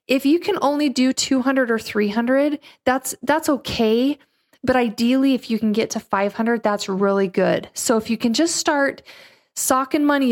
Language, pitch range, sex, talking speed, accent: English, 205-265 Hz, female, 175 wpm, American